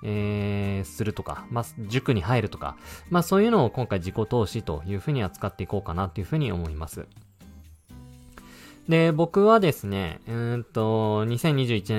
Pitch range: 95-145 Hz